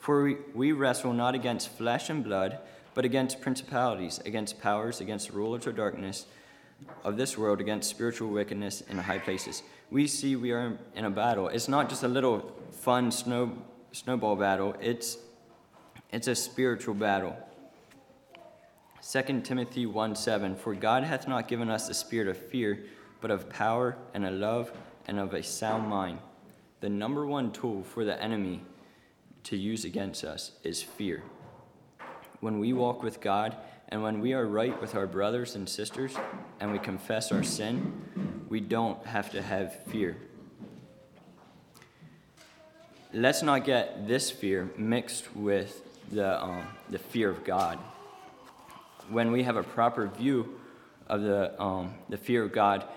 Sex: male